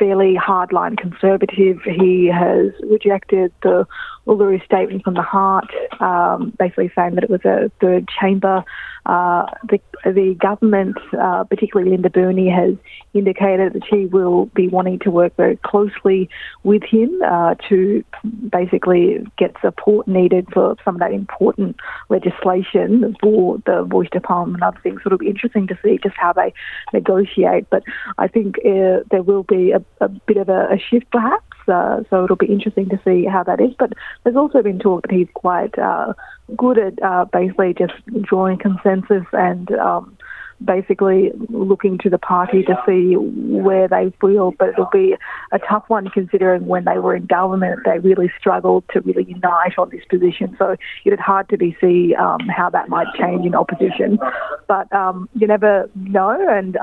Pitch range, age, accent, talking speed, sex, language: 185-210 Hz, 30-49, Australian, 170 wpm, female, English